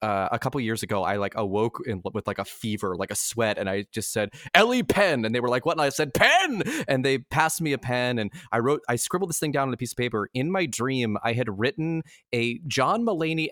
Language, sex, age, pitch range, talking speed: English, male, 20-39, 115-150 Hz, 260 wpm